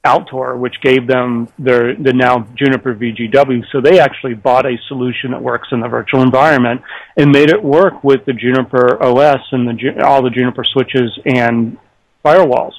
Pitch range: 125-145 Hz